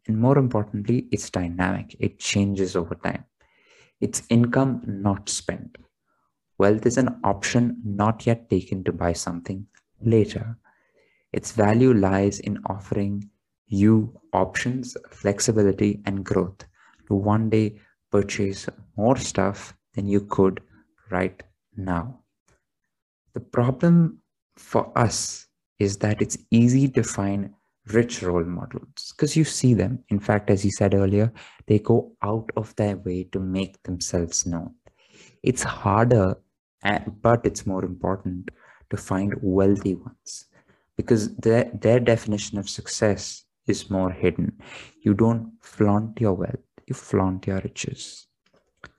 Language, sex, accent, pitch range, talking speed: English, male, Indian, 95-115 Hz, 130 wpm